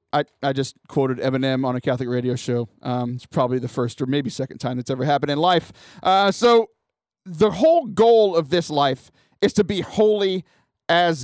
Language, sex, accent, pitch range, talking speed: English, male, American, 135-185 Hz, 200 wpm